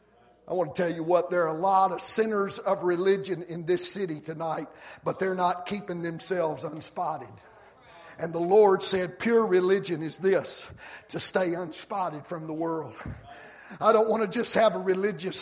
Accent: American